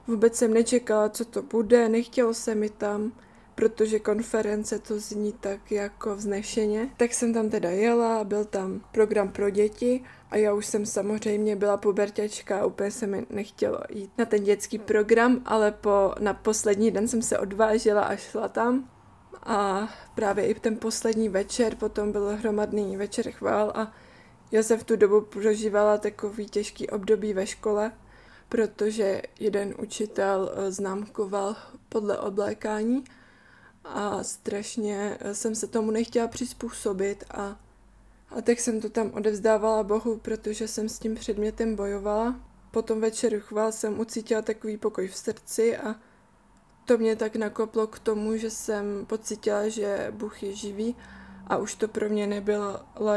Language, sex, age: Czech, female, 20-39